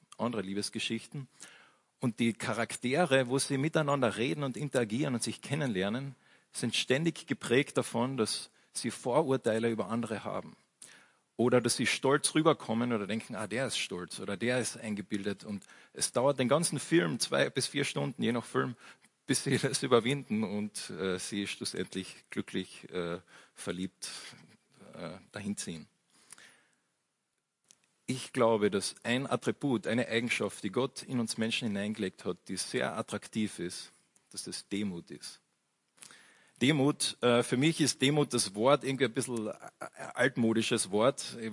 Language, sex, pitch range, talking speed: German, male, 110-135 Hz, 145 wpm